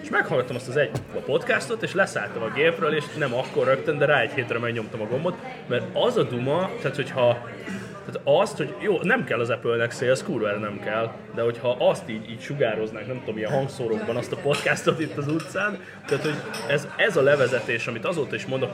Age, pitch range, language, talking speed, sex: 20-39, 115-165 Hz, Hungarian, 210 wpm, male